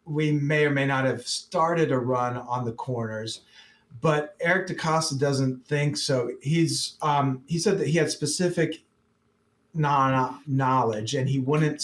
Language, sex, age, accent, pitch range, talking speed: English, male, 40-59, American, 125-150 Hz, 150 wpm